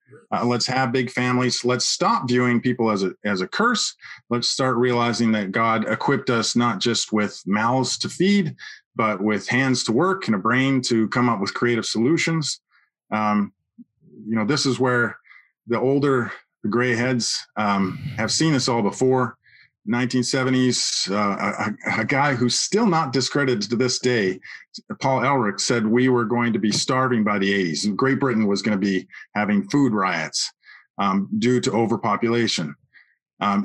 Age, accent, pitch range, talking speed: 40-59, American, 115-135 Hz, 170 wpm